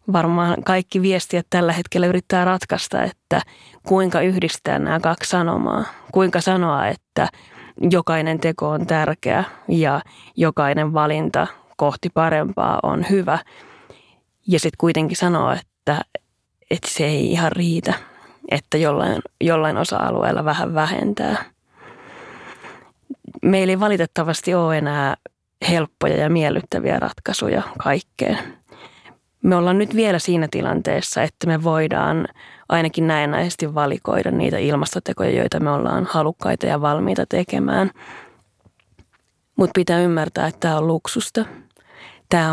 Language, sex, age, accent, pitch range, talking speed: Finnish, female, 30-49, native, 155-180 Hz, 115 wpm